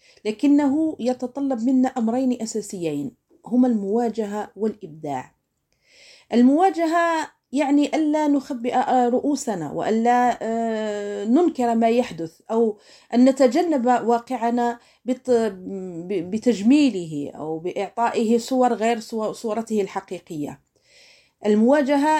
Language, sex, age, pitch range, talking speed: Arabic, female, 40-59, 210-270 Hz, 80 wpm